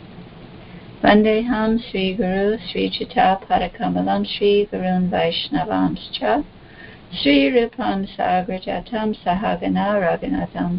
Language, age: English, 60-79